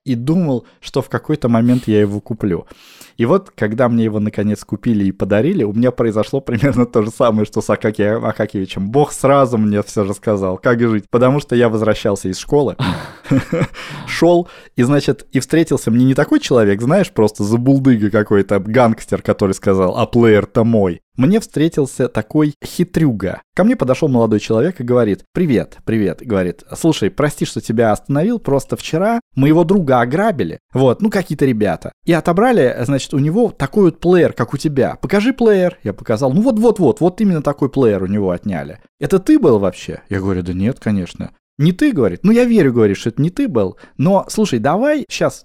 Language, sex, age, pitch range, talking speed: Russian, male, 20-39, 105-165 Hz, 185 wpm